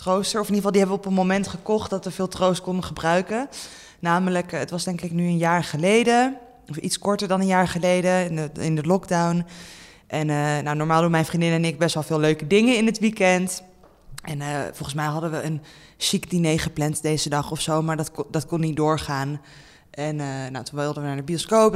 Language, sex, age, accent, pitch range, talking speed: Dutch, female, 20-39, Dutch, 160-195 Hz, 235 wpm